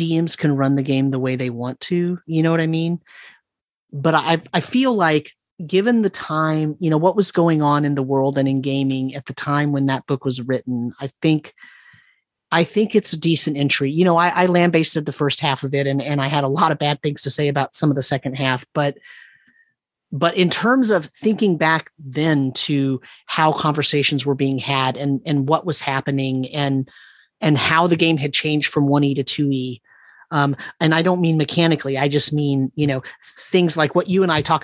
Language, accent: English, American